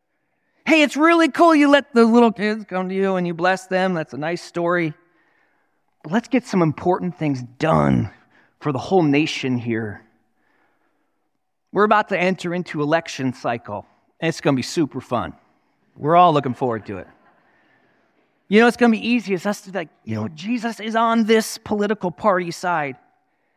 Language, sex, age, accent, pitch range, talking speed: English, male, 40-59, American, 170-265 Hz, 185 wpm